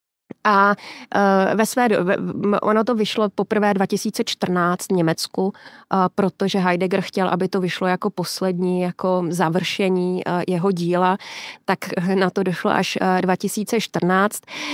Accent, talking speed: native, 105 wpm